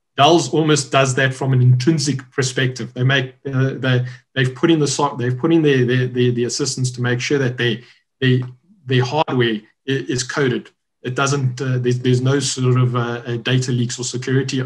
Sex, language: male, English